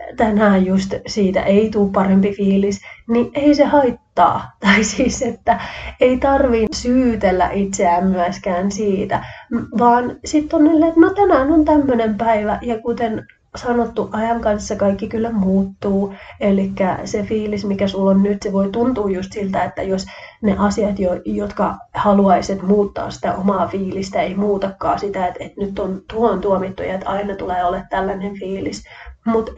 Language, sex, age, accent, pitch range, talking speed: Finnish, female, 30-49, native, 195-230 Hz, 155 wpm